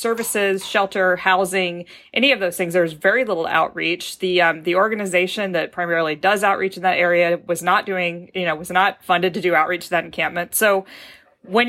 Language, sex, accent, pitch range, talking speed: English, female, American, 170-200 Hz, 190 wpm